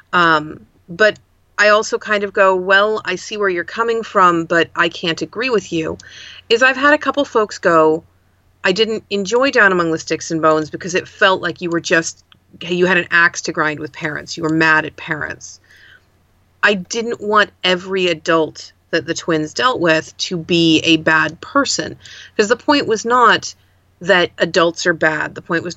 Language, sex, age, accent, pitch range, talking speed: English, female, 40-59, American, 160-210 Hz, 195 wpm